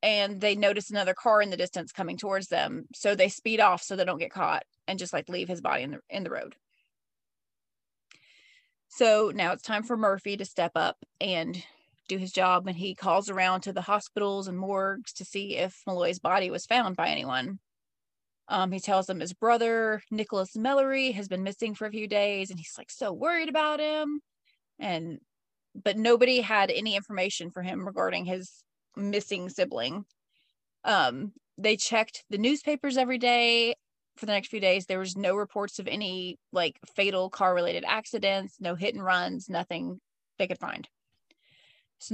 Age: 30-49